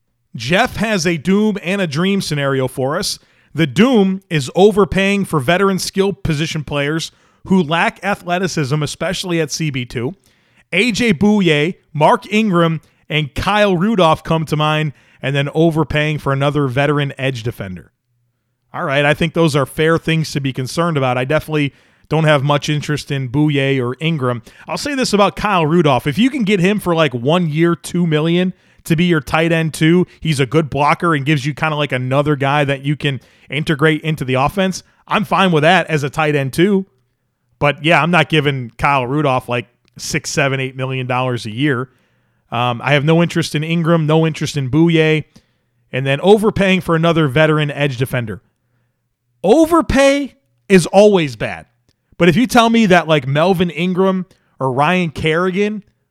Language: English